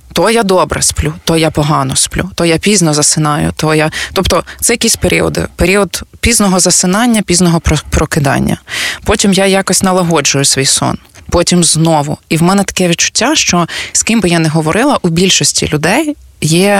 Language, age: Ukrainian, 20-39